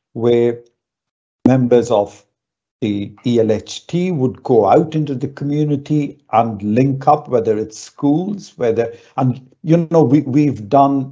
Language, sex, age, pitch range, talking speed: English, male, 50-69, 115-145 Hz, 125 wpm